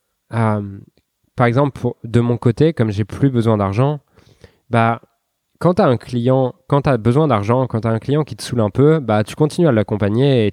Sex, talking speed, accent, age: male, 200 wpm, French, 20-39